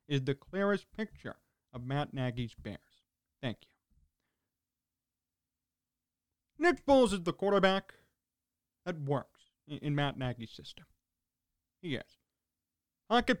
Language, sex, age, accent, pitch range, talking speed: English, male, 40-59, American, 145-230 Hz, 110 wpm